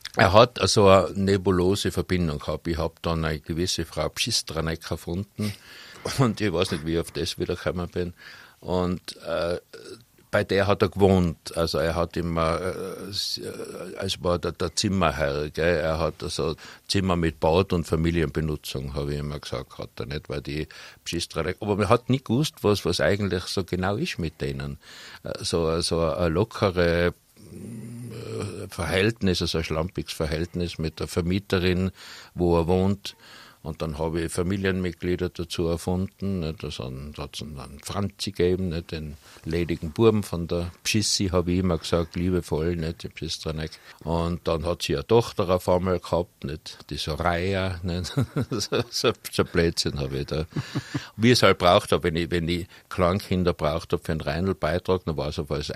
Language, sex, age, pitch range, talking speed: German, male, 60-79, 80-95 Hz, 165 wpm